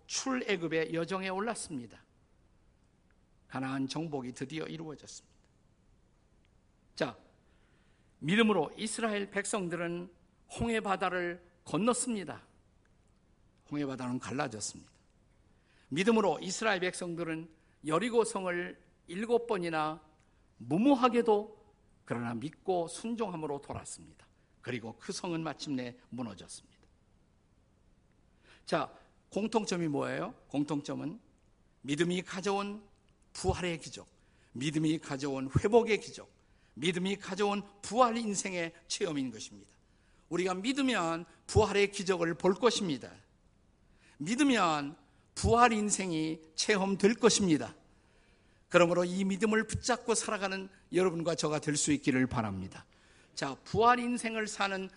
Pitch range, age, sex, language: 130-200 Hz, 50-69, male, Korean